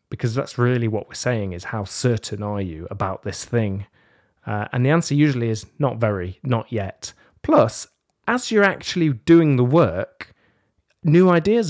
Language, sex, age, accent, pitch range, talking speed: English, male, 30-49, British, 105-140 Hz, 170 wpm